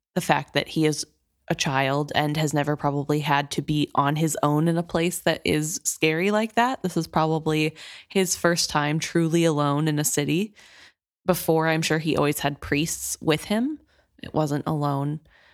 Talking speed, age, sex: 185 wpm, 20-39, female